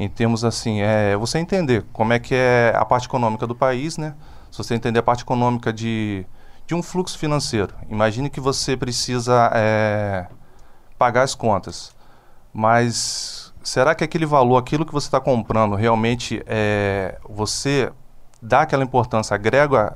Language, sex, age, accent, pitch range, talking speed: Portuguese, male, 20-39, Brazilian, 110-130 Hz, 155 wpm